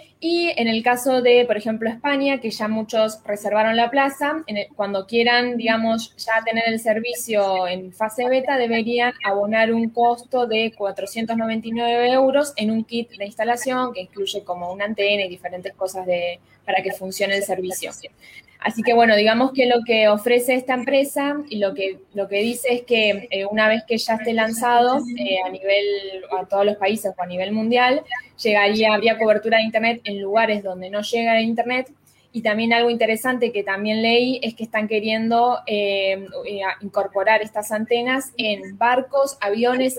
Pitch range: 195-235 Hz